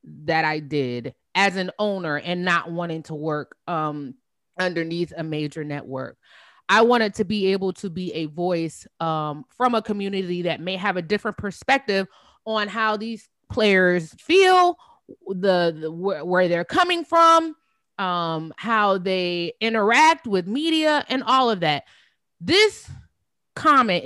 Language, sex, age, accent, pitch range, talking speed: English, female, 20-39, American, 155-235 Hz, 145 wpm